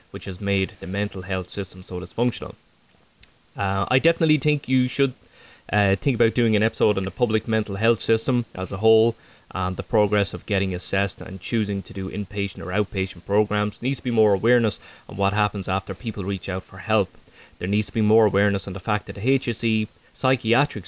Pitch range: 95-115 Hz